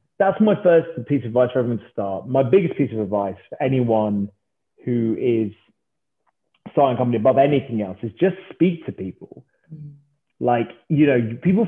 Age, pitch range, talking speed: 30-49, 125-190 Hz, 175 wpm